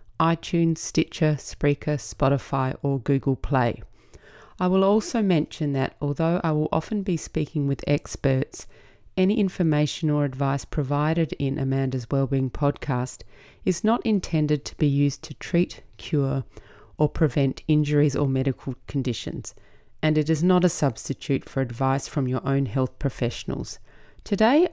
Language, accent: English, Australian